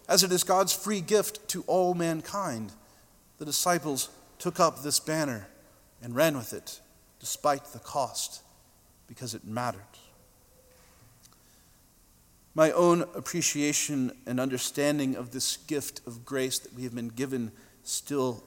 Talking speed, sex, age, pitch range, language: 135 wpm, male, 40-59, 120-165 Hz, English